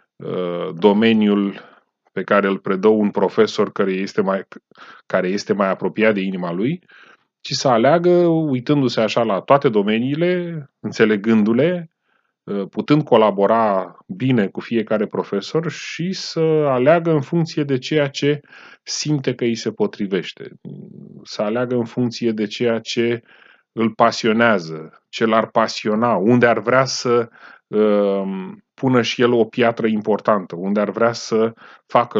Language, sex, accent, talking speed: Romanian, male, native, 130 wpm